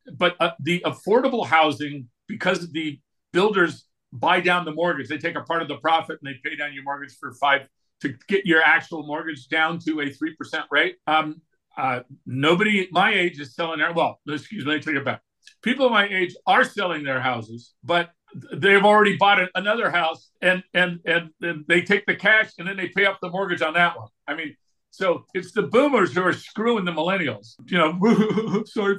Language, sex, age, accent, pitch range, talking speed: English, male, 50-69, American, 155-200 Hz, 200 wpm